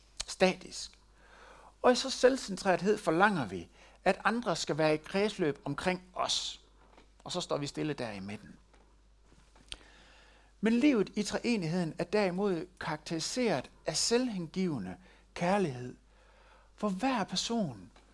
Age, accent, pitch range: 60-79, native, 170-230 Hz